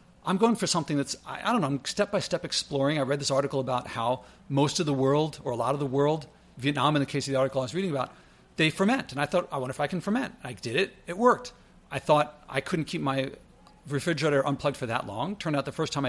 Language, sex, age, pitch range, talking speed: English, male, 50-69, 140-190 Hz, 260 wpm